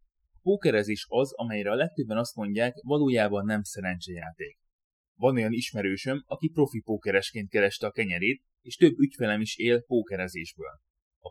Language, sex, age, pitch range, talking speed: Hungarian, male, 30-49, 90-120 Hz, 140 wpm